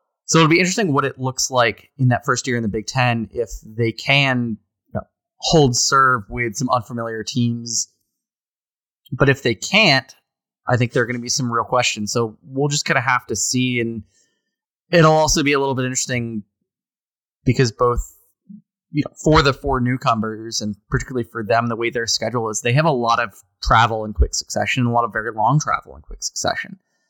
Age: 20-39